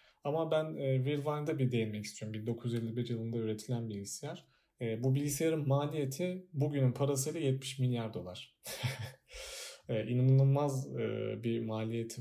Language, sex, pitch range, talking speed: Turkish, male, 115-140 Hz, 130 wpm